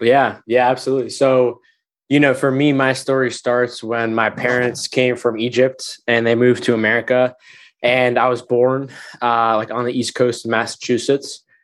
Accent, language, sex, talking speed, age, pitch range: American, English, male, 175 wpm, 20-39, 120-140 Hz